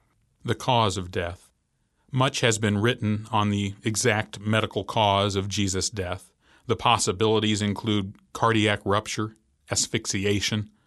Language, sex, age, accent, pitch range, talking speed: English, male, 40-59, American, 95-120 Hz, 120 wpm